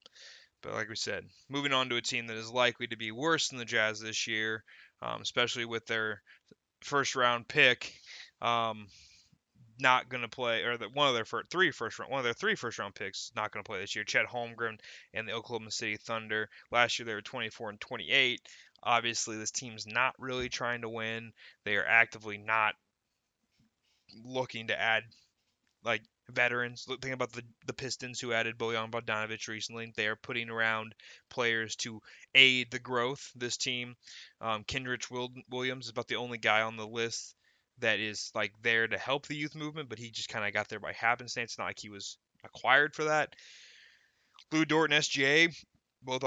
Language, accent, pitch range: English, American, 110-130 Hz